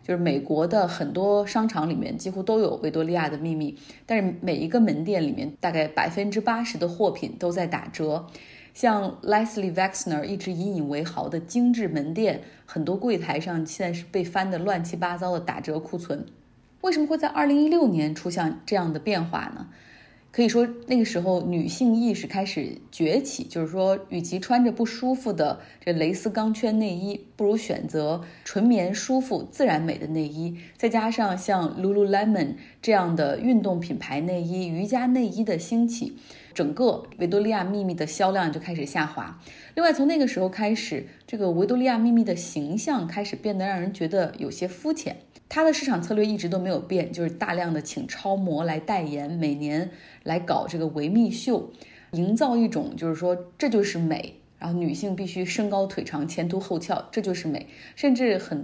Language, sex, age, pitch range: Chinese, female, 20-39, 165-225 Hz